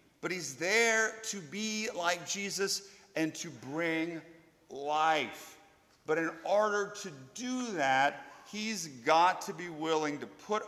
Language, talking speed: English, 135 wpm